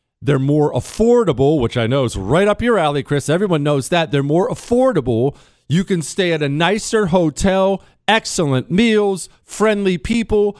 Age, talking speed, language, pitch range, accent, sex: 40-59, 165 wpm, English, 135-195 Hz, American, male